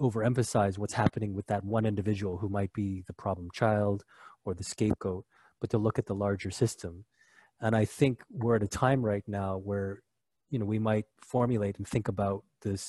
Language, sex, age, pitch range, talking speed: English, male, 20-39, 100-120 Hz, 195 wpm